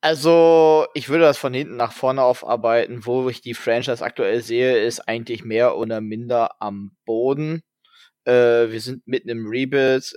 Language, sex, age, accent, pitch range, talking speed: German, male, 20-39, German, 110-120 Hz, 165 wpm